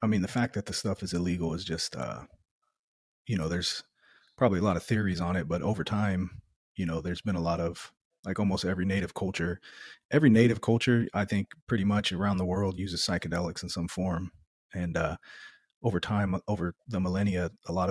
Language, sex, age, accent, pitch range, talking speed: English, male, 30-49, American, 90-100 Hz, 205 wpm